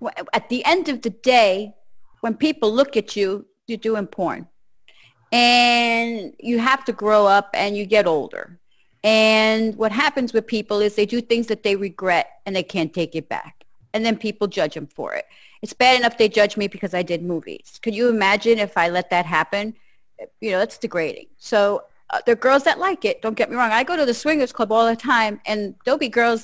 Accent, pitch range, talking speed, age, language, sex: American, 195-245 Hz, 220 wpm, 30-49, English, female